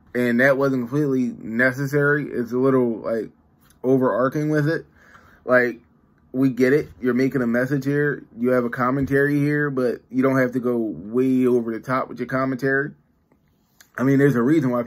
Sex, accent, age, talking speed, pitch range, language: male, American, 20-39, 180 wpm, 115-135 Hz, English